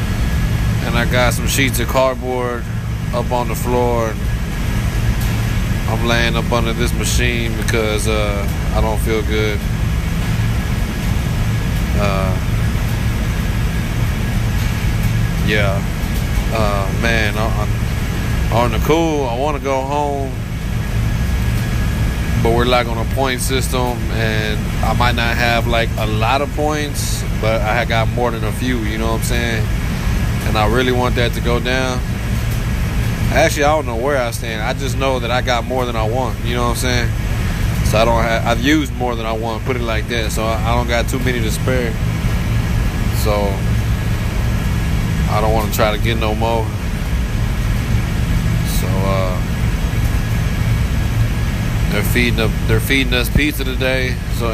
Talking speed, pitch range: 155 wpm, 110-120 Hz